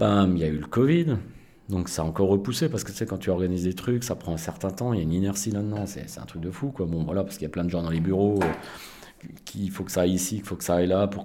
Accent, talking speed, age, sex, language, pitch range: French, 340 wpm, 40-59, male, French, 95-130 Hz